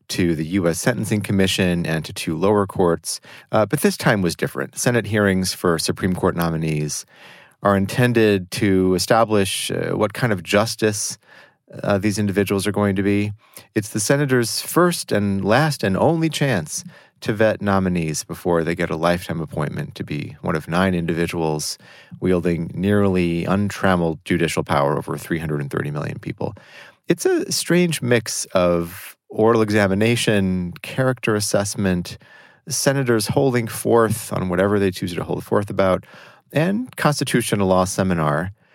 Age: 30-49